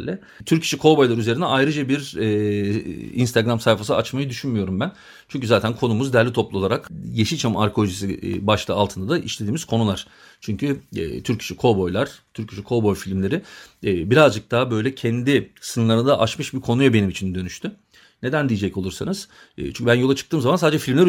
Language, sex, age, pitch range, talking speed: Turkish, male, 40-59, 100-130 Hz, 155 wpm